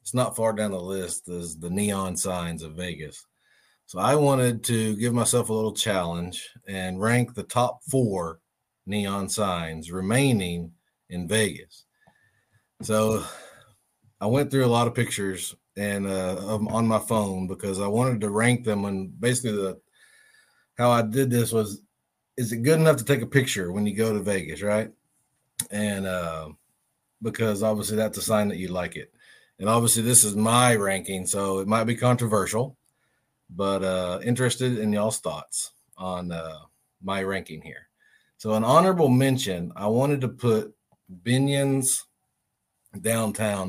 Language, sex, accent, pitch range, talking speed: English, male, American, 95-115 Hz, 160 wpm